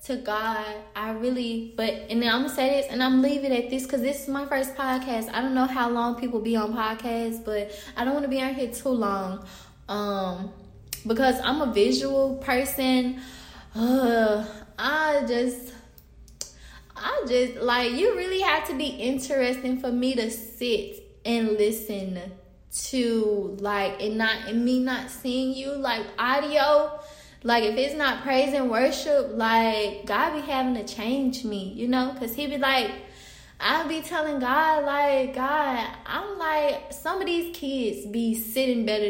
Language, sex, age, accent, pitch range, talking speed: English, female, 10-29, American, 210-265 Hz, 170 wpm